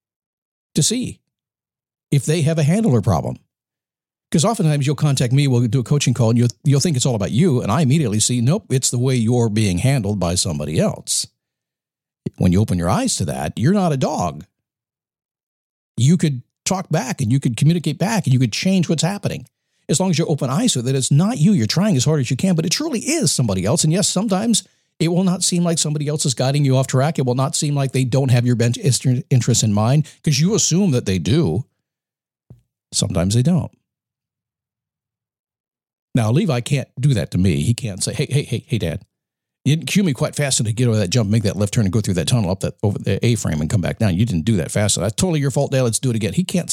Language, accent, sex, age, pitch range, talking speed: English, American, male, 50-69, 120-160 Hz, 245 wpm